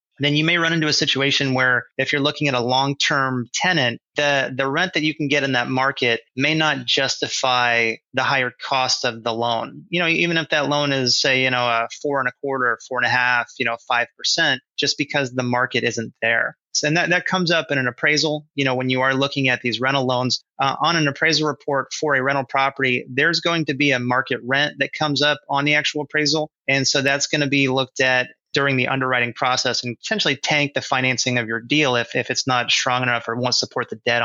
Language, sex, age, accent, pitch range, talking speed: English, male, 30-49, American, 125-150 Hz, 235 wpm